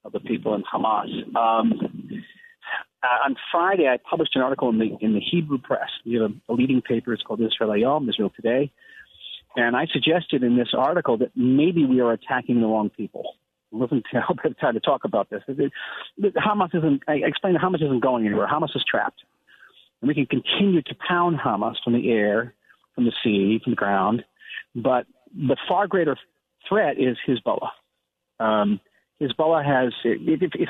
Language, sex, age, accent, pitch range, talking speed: English, male, 40-59, American, 120-165 Hz, 180 wpm